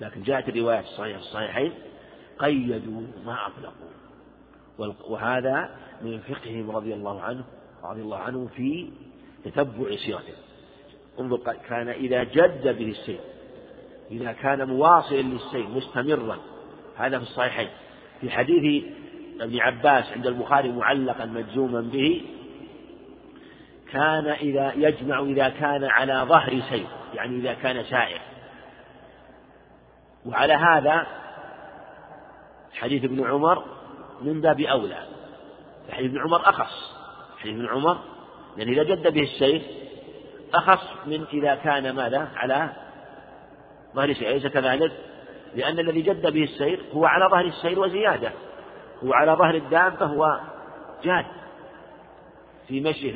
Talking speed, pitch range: 115 wpm, 125-155 Hz